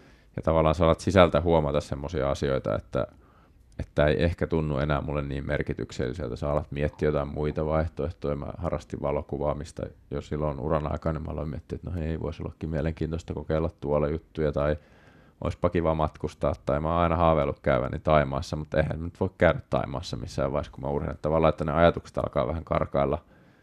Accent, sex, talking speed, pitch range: native, male, 180 wpm, 70-80 Hz